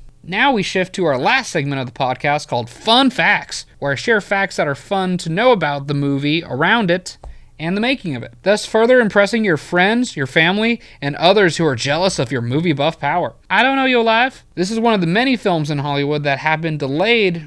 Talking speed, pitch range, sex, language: 230 wpm, 140-200 Hz, male, English